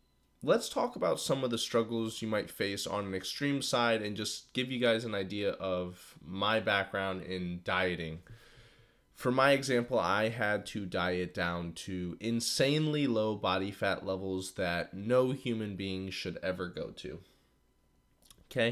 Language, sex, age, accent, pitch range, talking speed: English, male, 20-39, American, 95-120 Hz, 155 wpm